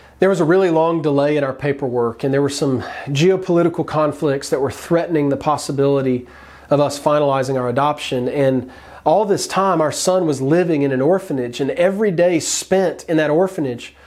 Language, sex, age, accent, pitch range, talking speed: English, male, 40-59, American, 145-185 Hz, 185 wpm